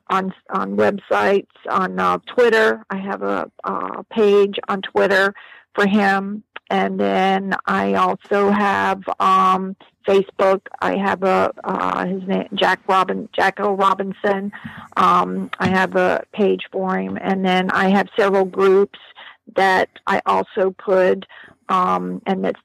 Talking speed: 140 wpm